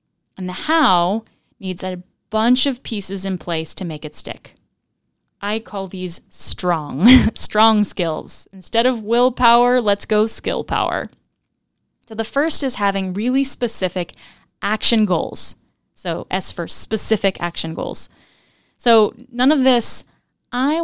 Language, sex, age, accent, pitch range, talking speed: English, female, 10-29, American, 185-235 Hz, 135 wpm